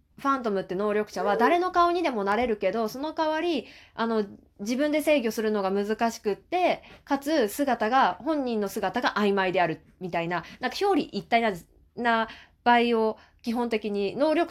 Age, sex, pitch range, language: 20-39, female, 195-280 Hz, Japanese